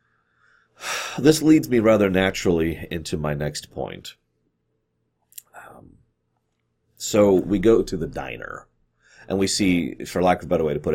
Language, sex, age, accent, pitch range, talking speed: English, male, 30-49, American, 90-115 Hz, 150 wpm